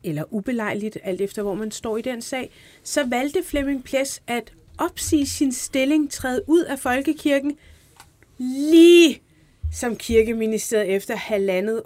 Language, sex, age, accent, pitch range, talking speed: Danish, female, 30-49, native, 195-255 Hz, 135 wpm